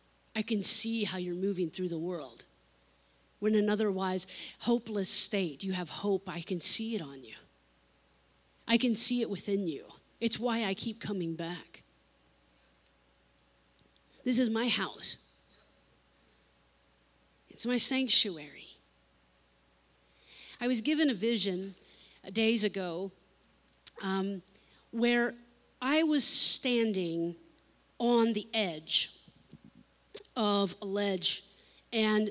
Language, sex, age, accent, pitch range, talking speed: English, female, 40-59, American, 175-225 Hz, 115 wpm